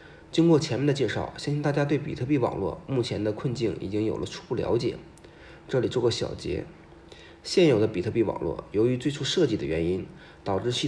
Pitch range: 115-155 Hz